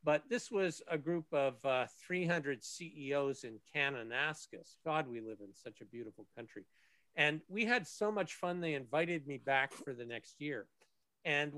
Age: 50-69